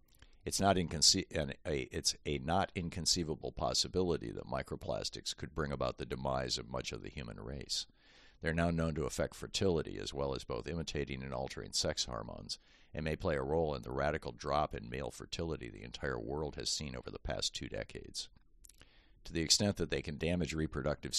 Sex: male